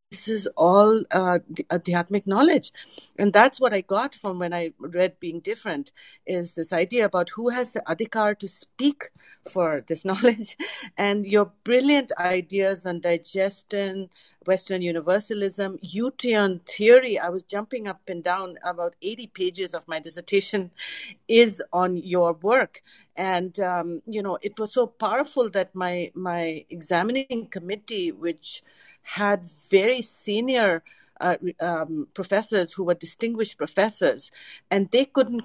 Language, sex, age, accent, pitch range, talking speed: English, female, 50-69, Indian, 170-215 Hz, 145 wpm